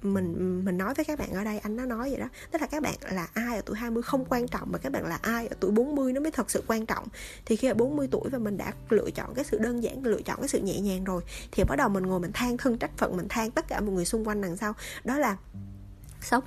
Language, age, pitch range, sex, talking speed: Vietnamese, 20-39, 185-255 Hz, female, 305 wpm